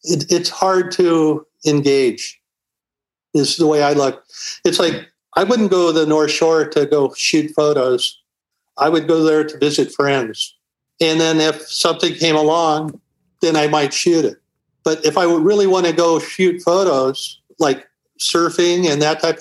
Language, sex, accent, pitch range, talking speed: English, male, American, 150-175 Hz, 170 wpm